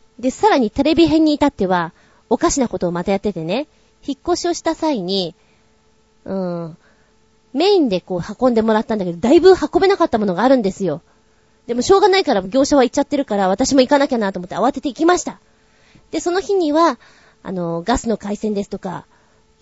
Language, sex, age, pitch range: Japanese, female, 20-39, 195-290 Hz